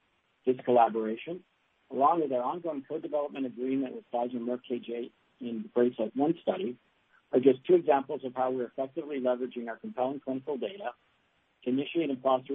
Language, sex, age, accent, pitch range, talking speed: English, male, 50-69, American, 120-145 Hz, 165 wpm